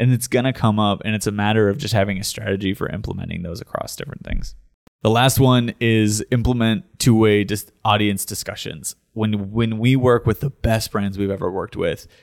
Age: 20-39